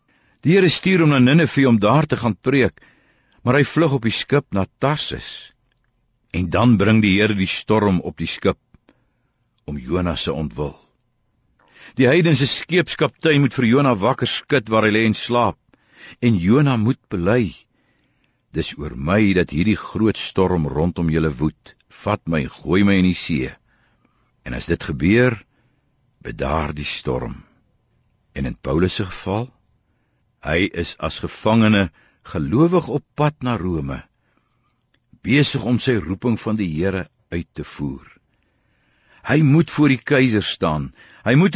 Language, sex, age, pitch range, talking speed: Dutch, male, 60-79, 90-125 Hz, 150 wpm